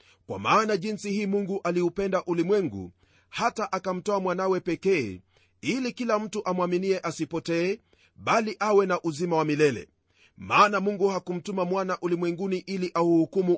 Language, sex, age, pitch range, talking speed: Swahili, male, 40-59, 150-200 Hz, 135 wpm